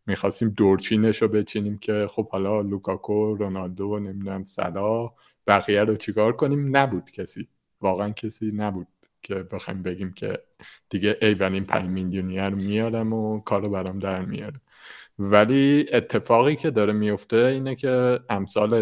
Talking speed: 135 wpm